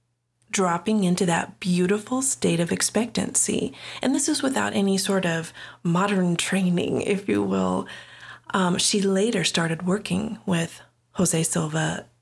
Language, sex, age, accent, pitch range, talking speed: English, female, 30-49, American, 170-210 Hz, 135 wpm